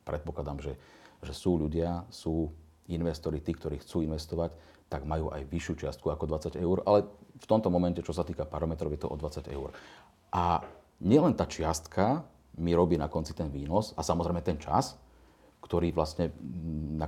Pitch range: 75-90 Hz